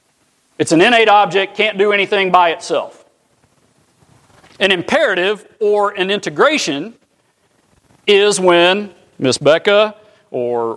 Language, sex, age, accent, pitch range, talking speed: English, male, 50-69, American, 160-215 Hz, 105 wpm